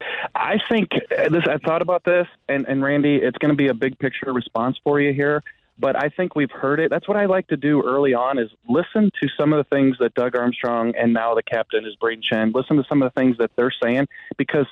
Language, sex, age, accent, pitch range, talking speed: English, male, 30-49, American, 115-140 Hz, 250 wpm